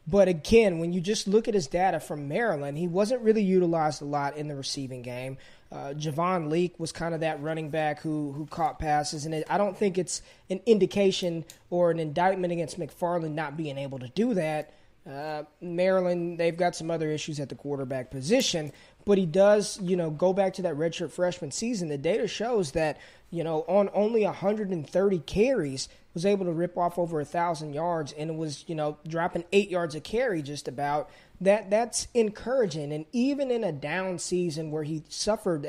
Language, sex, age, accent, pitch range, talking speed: English, male, 20-39, American, 155-195 Hz, 195 wpm